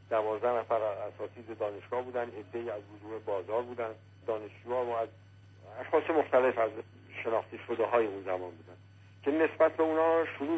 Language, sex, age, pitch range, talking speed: Persian, male, 50-69, 100-130 Hz, 155 wpm